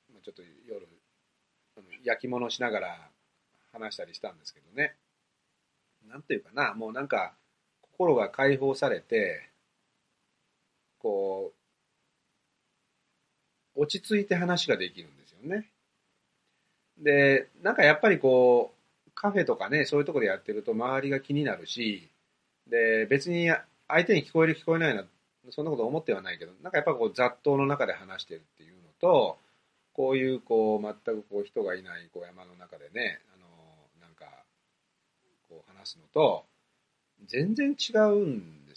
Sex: male